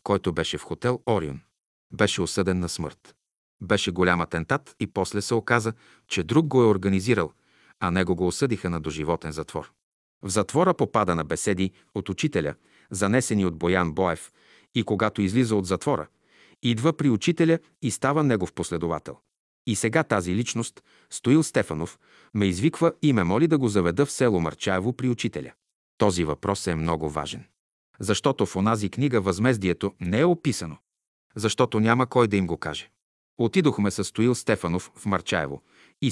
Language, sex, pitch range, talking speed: Bulgarian, male, 90-125 Hz, 160 wpm